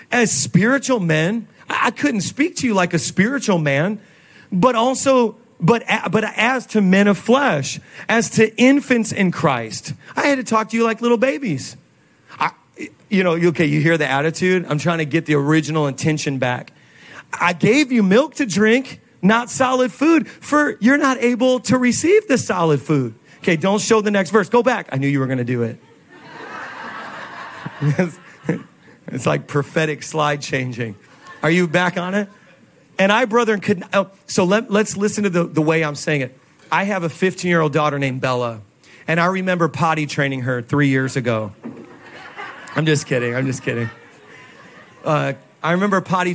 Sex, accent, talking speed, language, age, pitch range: male, American, 180 wpm, English, 40-59, 145-210 Hz